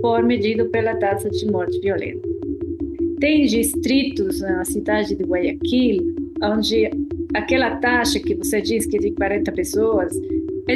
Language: Portuguese